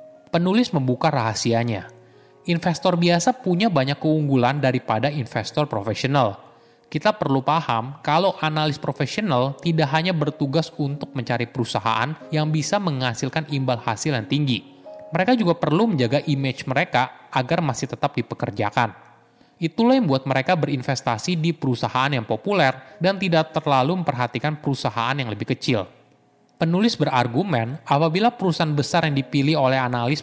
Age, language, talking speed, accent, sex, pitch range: 20-39, Indonesian, 130 wpm, native, male, 120-165 Hz